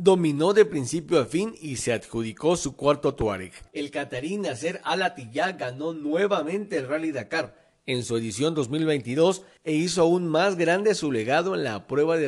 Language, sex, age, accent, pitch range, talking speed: Spanish, male, 50-69, Mexican, 130-165 Hz, 175 wpm